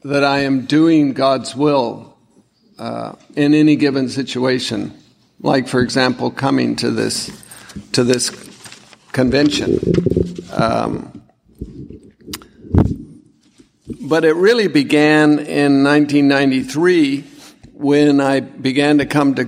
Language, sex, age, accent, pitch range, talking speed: English, male, 50-69, American, 125-145 Hz, 100 wpm